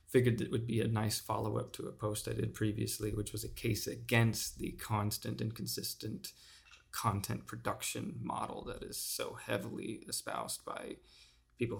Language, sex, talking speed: English, male, 165 wpm